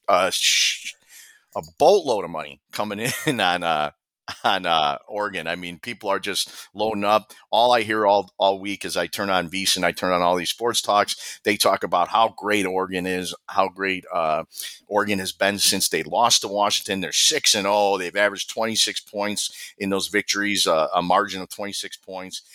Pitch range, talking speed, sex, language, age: 90-105 Hz, 195 wpm, male, English, 40-59